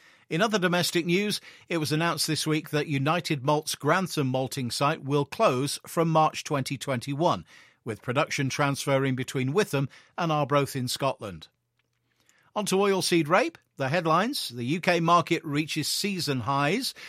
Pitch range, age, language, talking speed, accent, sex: 140-175 Hz, 50-69, English, 145 wpm, British, male